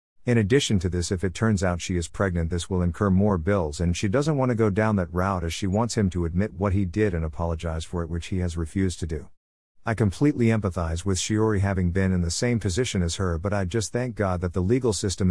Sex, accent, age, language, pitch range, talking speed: male, American, 50-69, English, 90-110 Hz, 260 wpm